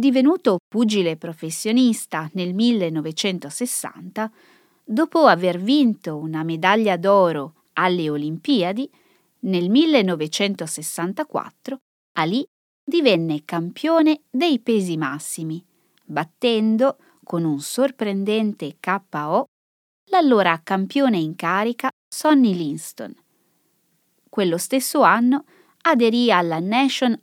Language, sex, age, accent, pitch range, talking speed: Italian, female, 20-39, native, 175-260 Hz, 85 wpm